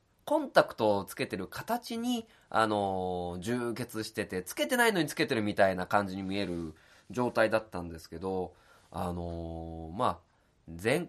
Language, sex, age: Japanese, male, 20-39